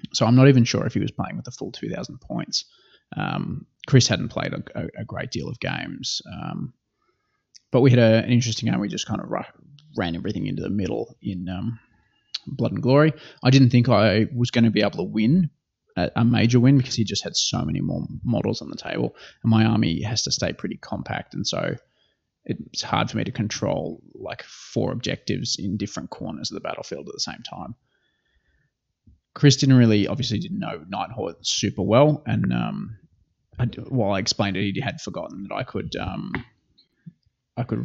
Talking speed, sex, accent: 200 wpm, male, Australian